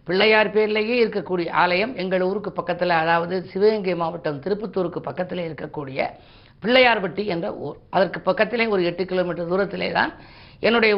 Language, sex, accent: Tamil, female, native